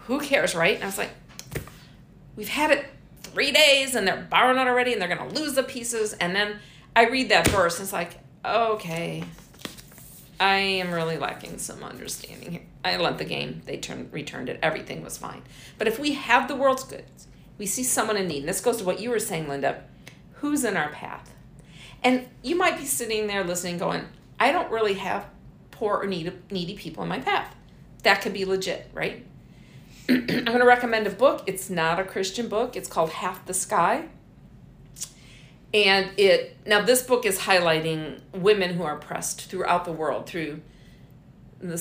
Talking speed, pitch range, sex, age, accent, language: 190 wpm, 170-220 Hz, female, 50-69, American, English